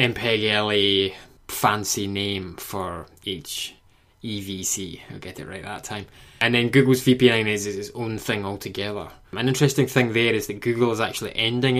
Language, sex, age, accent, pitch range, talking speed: English, male, 10-29, British, 100-130 Hz, 165 wpm